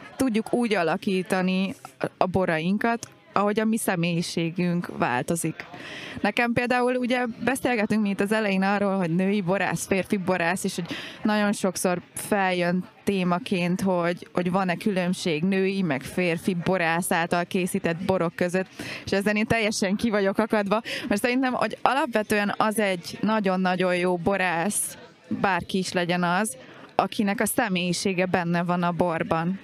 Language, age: Hungarian, 20-39